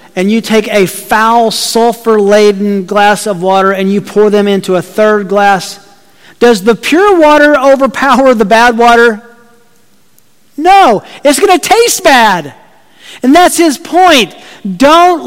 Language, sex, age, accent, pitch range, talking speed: English, male, 40-59, American, 205-270 Hz, 140 wpm